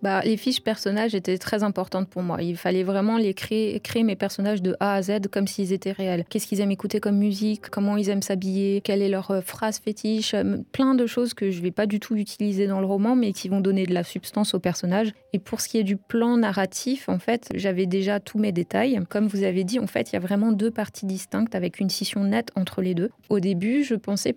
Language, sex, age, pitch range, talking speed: French, female, 20-39, 190-220 Hz, 250 wpm